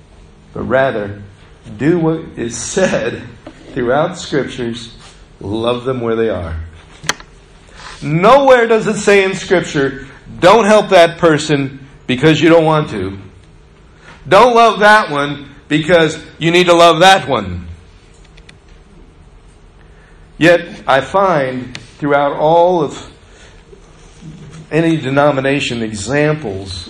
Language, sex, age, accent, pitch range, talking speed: English, male, 50-69, American, 110-160 Hz, 105 wpm